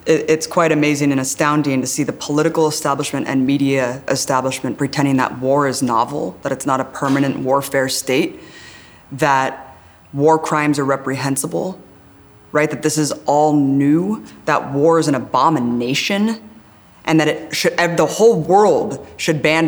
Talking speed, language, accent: 145 wpm, English, American